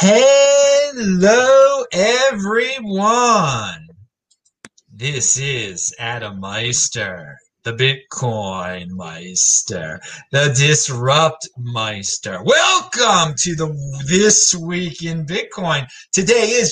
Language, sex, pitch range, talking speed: English, male, 135-210 Hz, 75 wpm